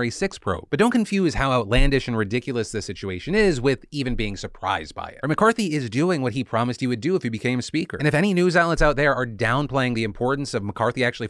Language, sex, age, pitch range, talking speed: English, male, 30-49, 110-150 Hz, 245 wpm